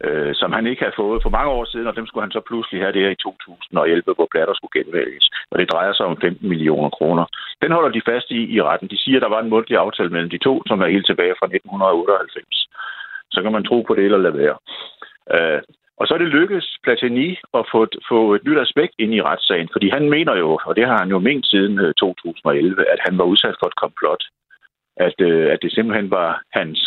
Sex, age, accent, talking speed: male, 60-79, native, 240 wpm